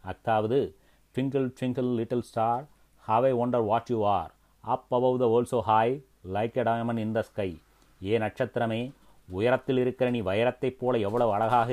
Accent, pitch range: native, 110-125 Hz